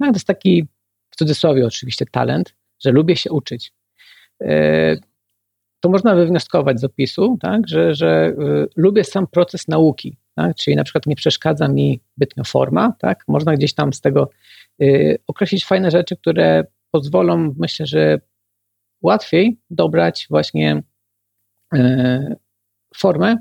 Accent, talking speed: native, 130 wpm